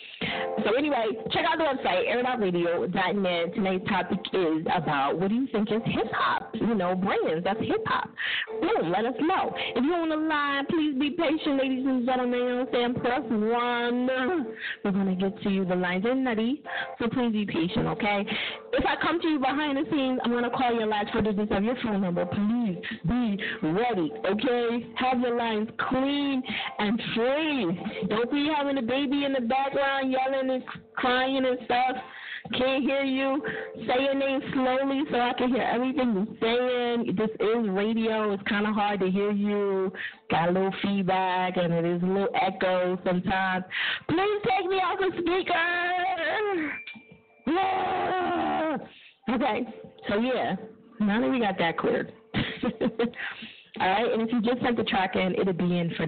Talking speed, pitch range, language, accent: 175 wpm, 205-270 Hz, English, American